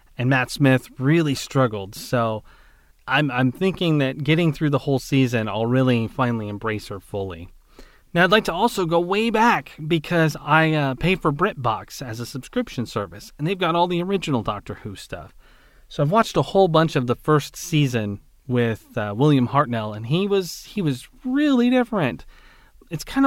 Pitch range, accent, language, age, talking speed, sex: 120-160 Hz, American, English, 30-49, 185 wpm, male